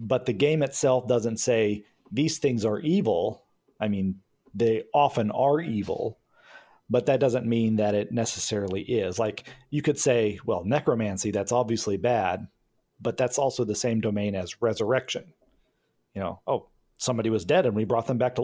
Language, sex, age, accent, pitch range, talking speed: English, male, 40-59, American, 105-125 Hz, 175 wpm